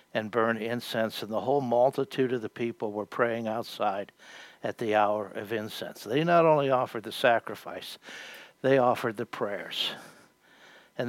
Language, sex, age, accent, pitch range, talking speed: English, male, 60-79, American, 115-150 Hz, 155 wpm